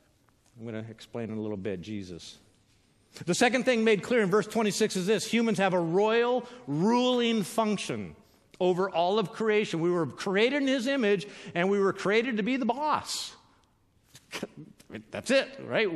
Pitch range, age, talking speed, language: 165-215 Hz, 50-69, 170 wpm, English